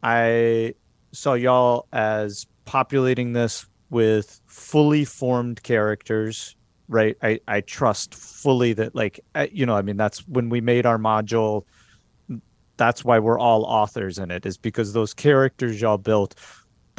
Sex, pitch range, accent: male, 105-130 Hz, American